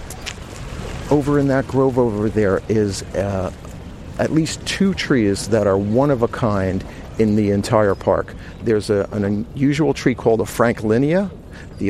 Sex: male